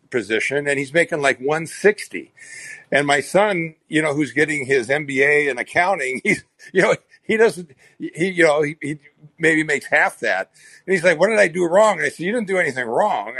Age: 50-69